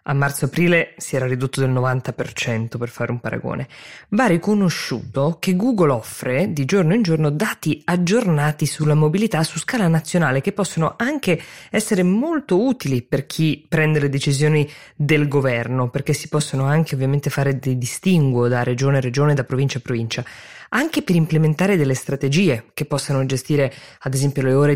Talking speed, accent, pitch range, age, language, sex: 165 wpm, native, 130-160 Hz, 20-39, Italian, female